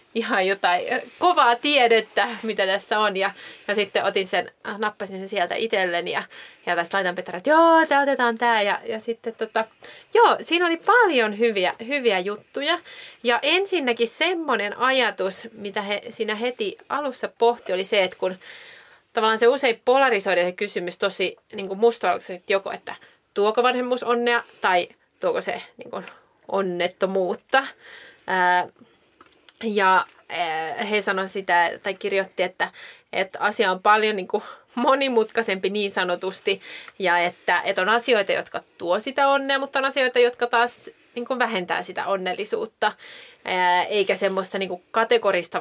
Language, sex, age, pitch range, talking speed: Finnish, female, 30-49, 190-245 Hz, 140 wpm